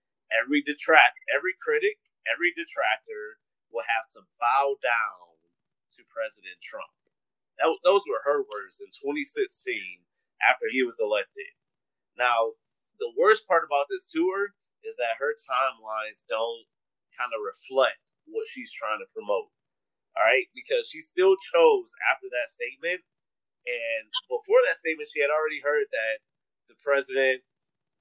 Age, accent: 30-49, American